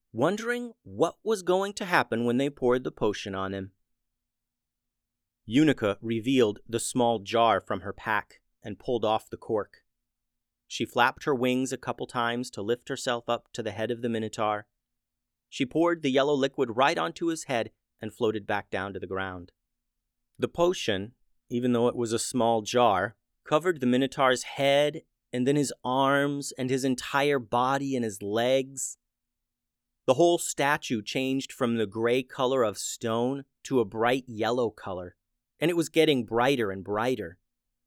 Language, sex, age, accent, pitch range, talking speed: English, male, 30-49, American, 115-135 Hz, 165 wpm